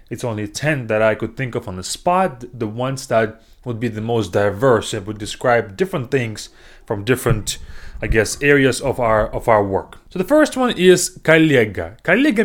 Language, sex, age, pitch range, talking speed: English, male, 20-39, 110-180 Hz, 200 wpm